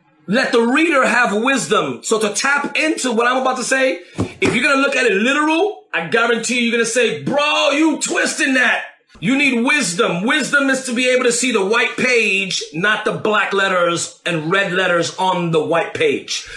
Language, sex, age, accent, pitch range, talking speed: English, male, 30-49, American, 210-275 Hz, 195 wpm